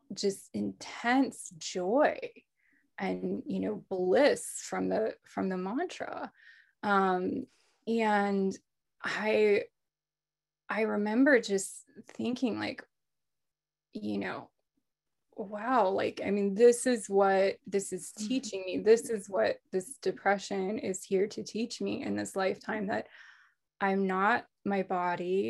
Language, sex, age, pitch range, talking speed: English, female, 20-39, 185-215 Hz, 120 wpm